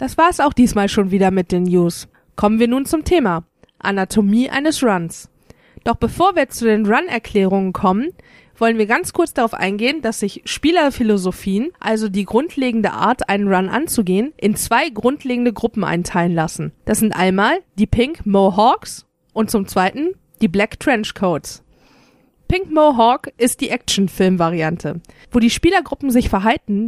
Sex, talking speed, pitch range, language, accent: female, 160 wpm, 195-250 Hz, German, German